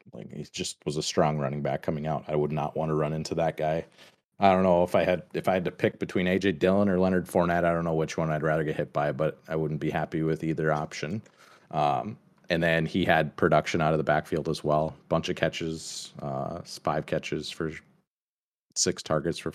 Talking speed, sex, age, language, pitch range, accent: 235 wpm, male, 30-49, English, 75-95 Hz, American